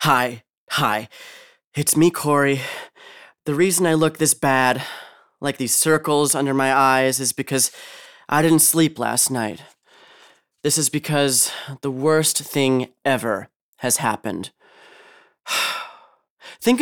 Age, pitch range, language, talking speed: 30-49, 135-185 Hz, English, 120 wpm